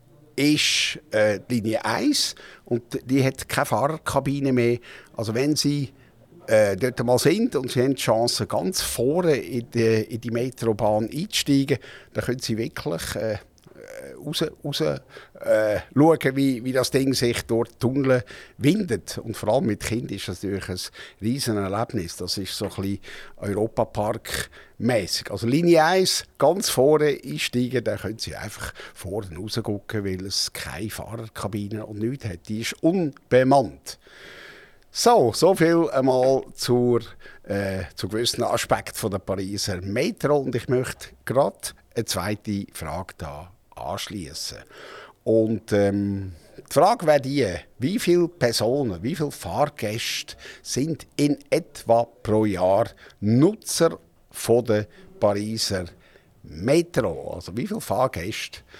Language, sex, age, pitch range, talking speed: German, male, 60-79, 105-135 Hz, 135 wpm